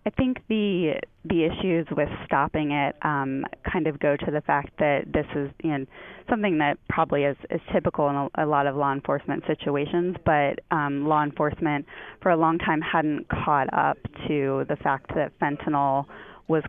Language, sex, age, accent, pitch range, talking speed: English, female, 20-39, American, 140-160 Hz, 185 wpm